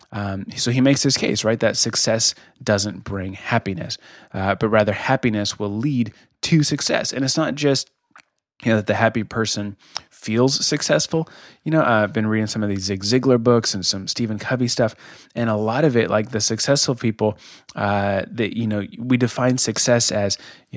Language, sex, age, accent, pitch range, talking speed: English, male, 20-39, American, 105-125 Hz, 190 wpm